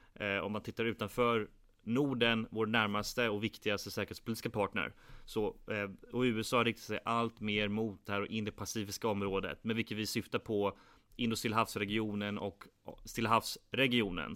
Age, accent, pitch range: 30-49, Swedish, 105-120 Hz